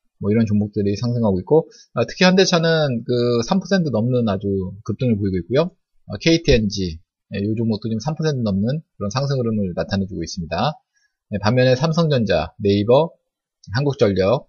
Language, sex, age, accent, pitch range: Korean, male, 20-39, native, 100-155 Hz